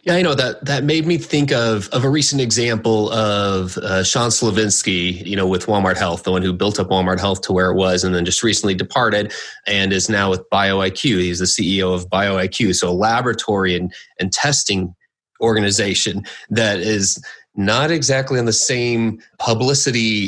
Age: 30-49